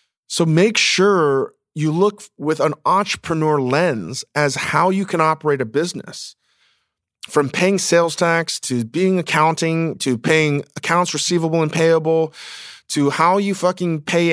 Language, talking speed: English, 140 wpm